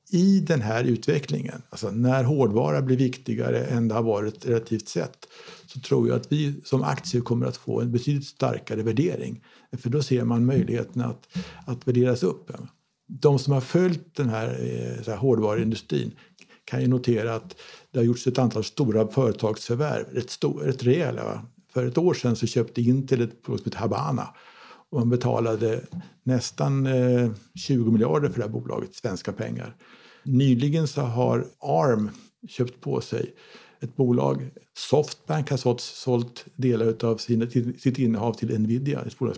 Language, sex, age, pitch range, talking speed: Swedish, male, 60-79, 115-140 Hz, 155 wpm